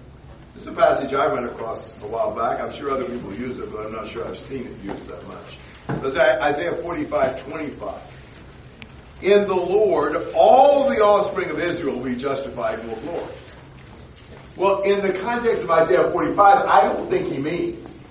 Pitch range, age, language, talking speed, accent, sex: 145-225 Hz, 50-69, English, 180 wpm, American, male